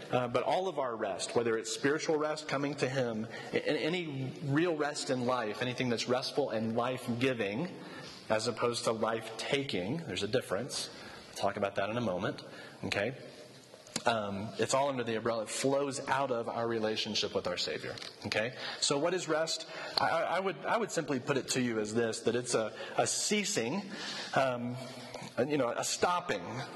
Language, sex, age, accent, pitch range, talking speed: English, male, 30-49, American, 110-145 Hz, 180 wpm